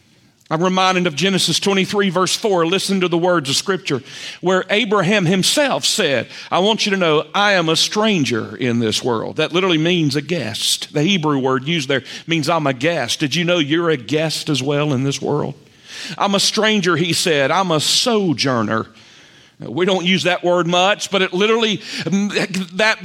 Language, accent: English, American